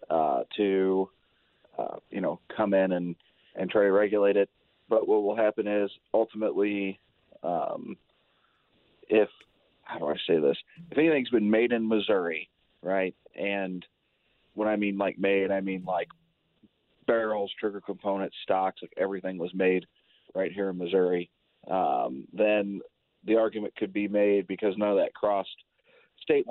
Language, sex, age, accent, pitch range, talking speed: English, male, 30-49, American, 100-110 Hz, 150 wpm